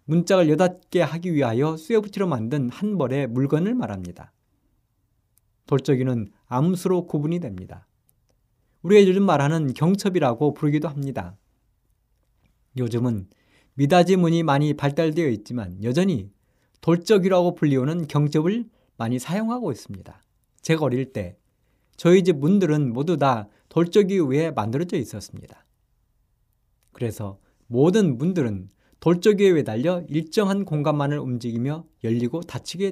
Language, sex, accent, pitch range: Korean, male, native, 115-175 Hz